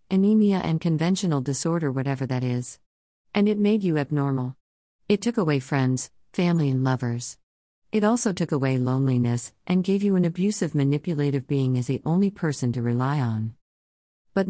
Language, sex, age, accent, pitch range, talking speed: English, female, 40-59, American, 130-170 Hz, 160 wpm